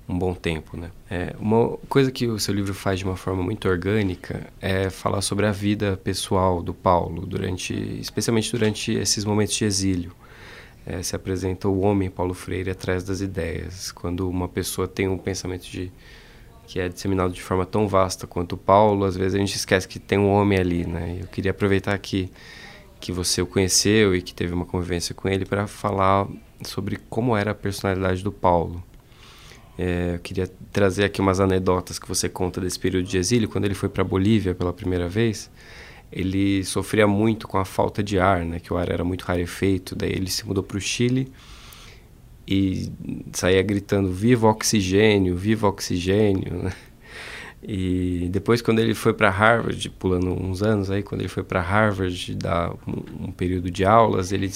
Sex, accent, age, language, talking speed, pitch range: male, Brazilian, 20-39, Portuguese, 185 wpm, 90-105 Hz